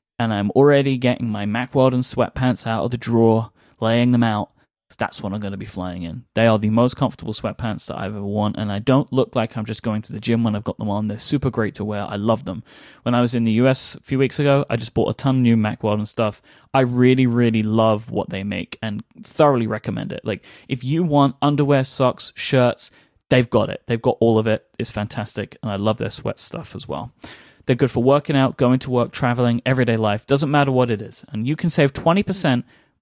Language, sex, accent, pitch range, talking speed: English, male, British, 110-135 Hz, 245 wpm